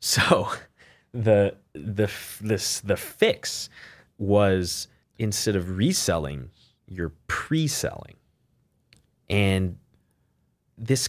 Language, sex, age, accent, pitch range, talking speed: English, male, 20-39, American, 85-110 Hz, 75 wpm